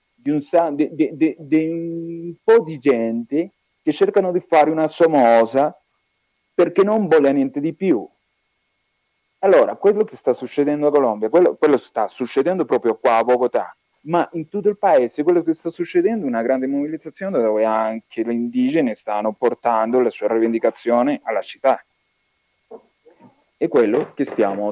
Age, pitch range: 40-59, 120-175 Hz